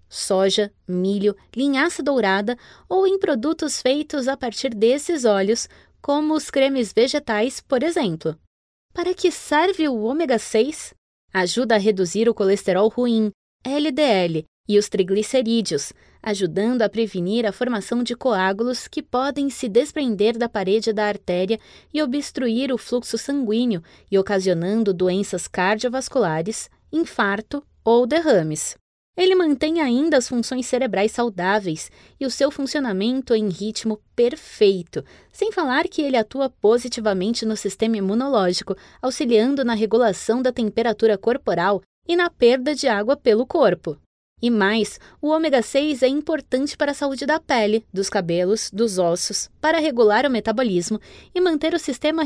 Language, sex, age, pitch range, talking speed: Portuguese, female, 20-39, 210-285 Hz, 140 wpm